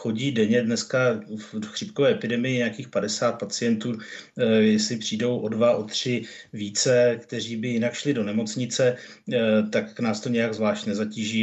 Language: Czech